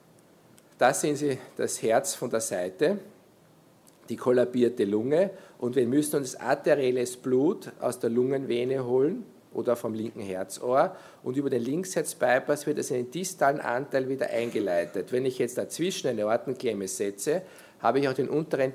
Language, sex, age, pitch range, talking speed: German, male, 50-69, 120-145 Hz, 160 wpm